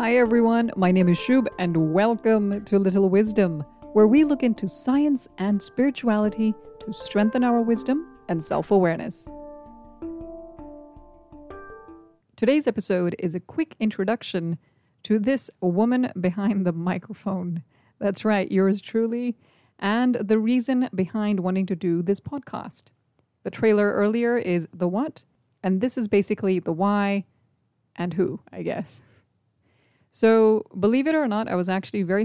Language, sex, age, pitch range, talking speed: English, female, 30-49, 175-230 Hz, 140 wpm